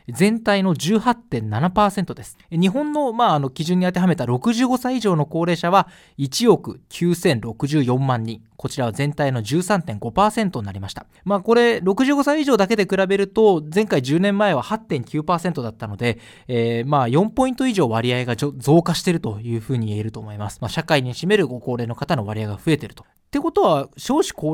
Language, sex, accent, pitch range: Japanese, male, native, 120-195 Hz